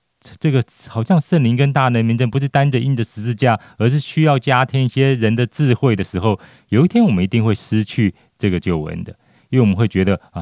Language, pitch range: Chinese, 95-125 Hz